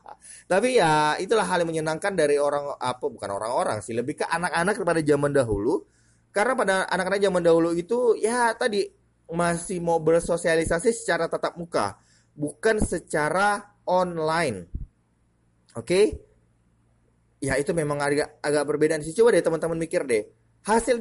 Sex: male